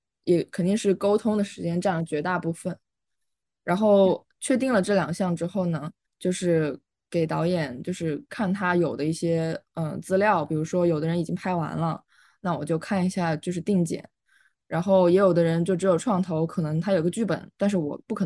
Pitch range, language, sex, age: 170-205 Hz, Chinese, female, 20-39